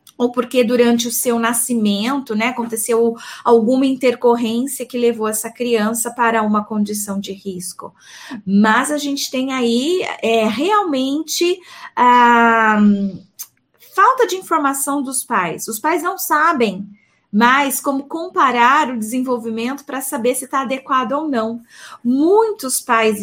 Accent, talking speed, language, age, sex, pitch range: Brazilian, 125 wpm, Portuguese, 20-39, female, 230-295 Hz